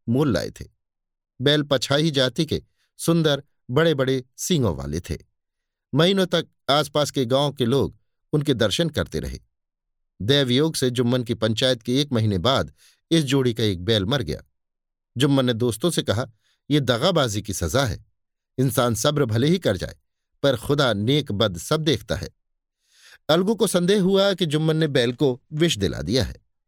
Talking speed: 170 wpm